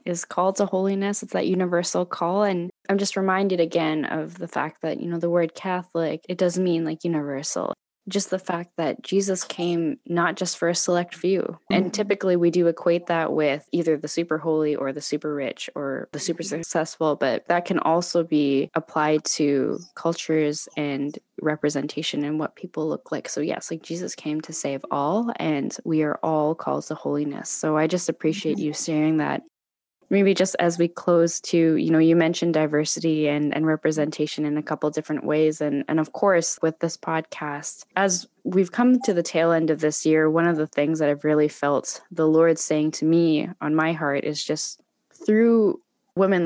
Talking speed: 195 wpm